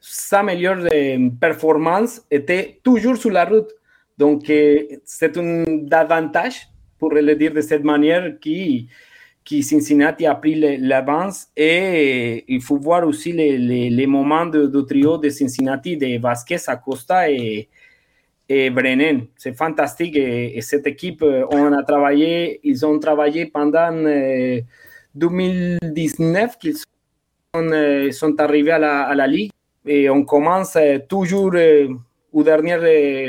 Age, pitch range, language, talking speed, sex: 30-49, 145-175 Hz, French, 135 wpm, male